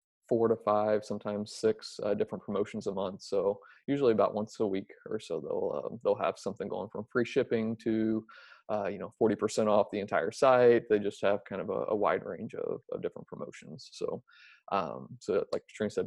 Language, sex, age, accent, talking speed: English, male, 20-39, American, 210 wpm